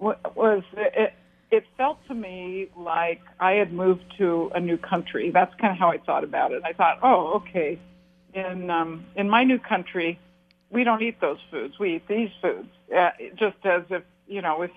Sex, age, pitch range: female, 50-69, 175-205 Hz